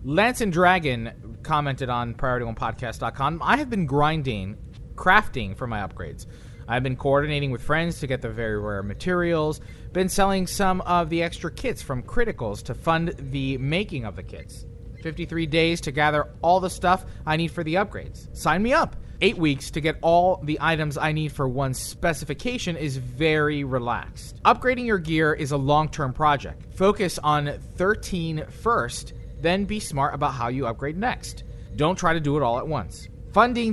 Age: 30-49